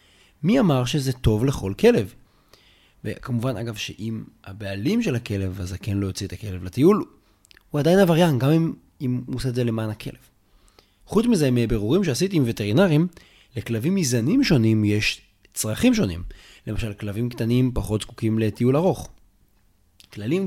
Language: Hebrew